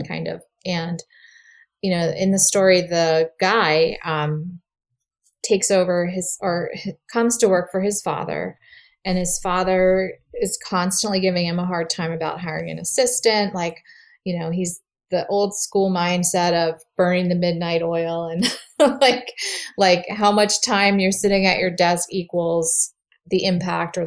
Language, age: English, 30-49